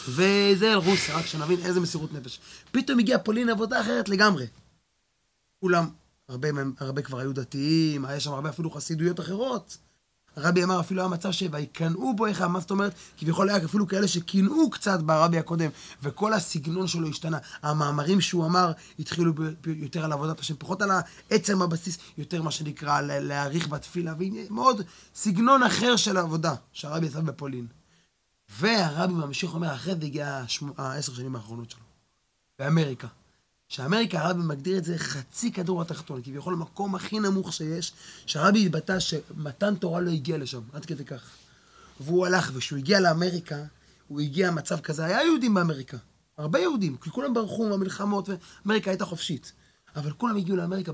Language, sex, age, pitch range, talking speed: Hebrew, male, 20-39, 145-190 Hz, 165 wpm